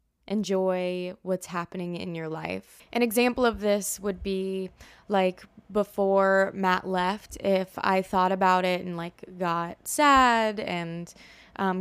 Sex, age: female, 20-39